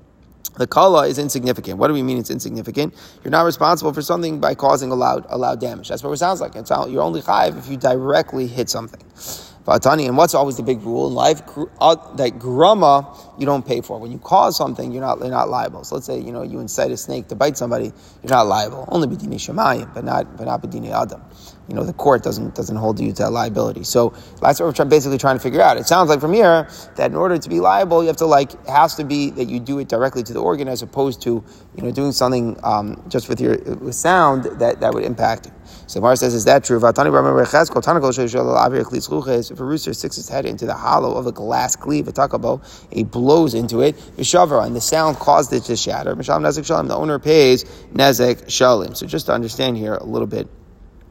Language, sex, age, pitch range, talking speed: English, male, 30-49, 115-140 Hz, 220 wpm